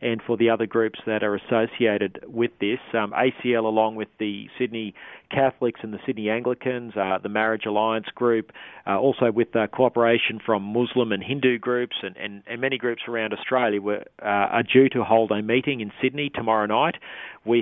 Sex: male